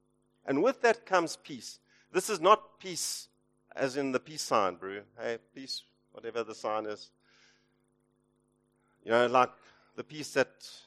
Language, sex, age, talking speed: English, male, 50-69, 150 wpm